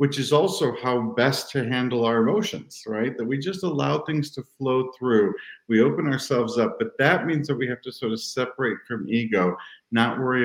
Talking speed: 205 wpm